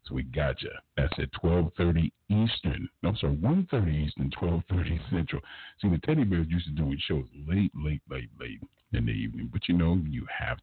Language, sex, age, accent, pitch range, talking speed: English, male, 50-69, American, 80-100 Hz, 200 wpm